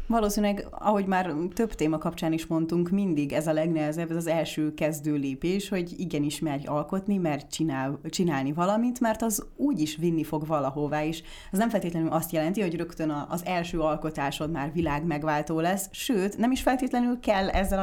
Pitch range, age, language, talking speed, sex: 155-190 Hz, 30-49, Hungarian, 180 wpm, female